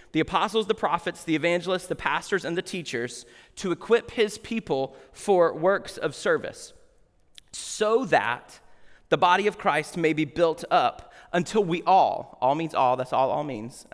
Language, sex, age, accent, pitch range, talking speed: English, male, 30-49, American, 160-205 Hz, 170 wpm